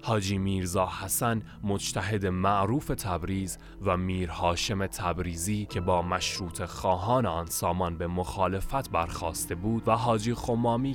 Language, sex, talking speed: Persian, male, 120 wpm